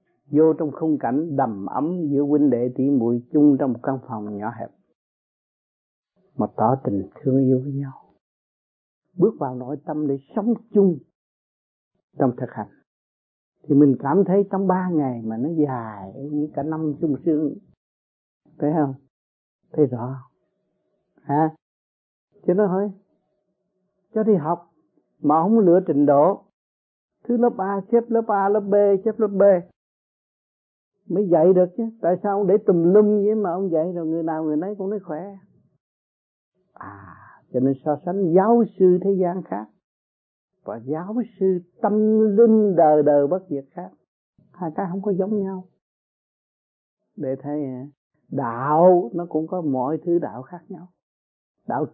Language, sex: Vietnamese, male